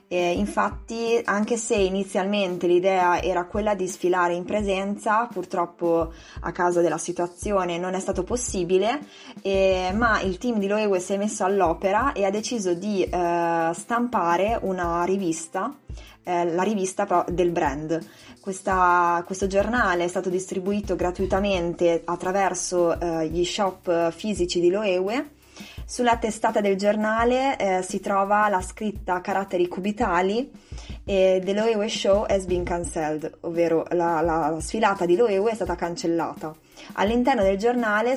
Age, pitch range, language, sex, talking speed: 20-39, 175-210 Hz, Italian, female, 135 wpm